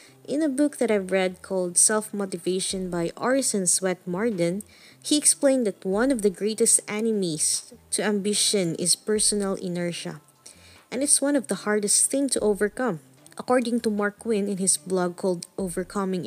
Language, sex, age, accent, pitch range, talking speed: English, female, 20-39, Filipino, 185-225 Hz, 160 wpm